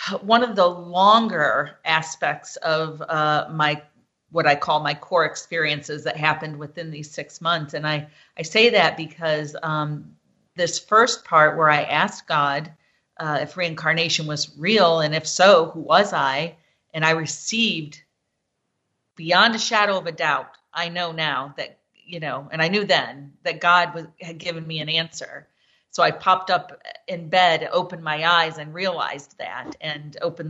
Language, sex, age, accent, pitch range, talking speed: English, female, 40-59, American, 155-185 Hz, 165 wpm